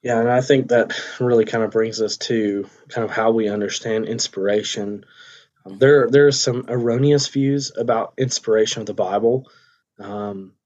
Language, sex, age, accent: English, male, 20-39, American